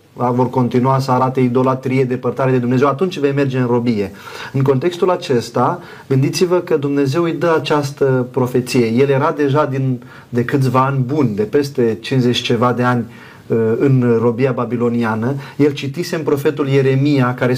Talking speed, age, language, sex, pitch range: 160 wpm, 30-49, Romanian, male, 125-150 Hz